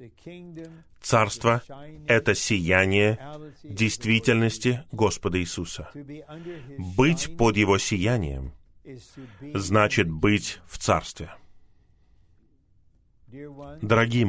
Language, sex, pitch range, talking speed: Russian, male, 95-135 Hz, 65 wpm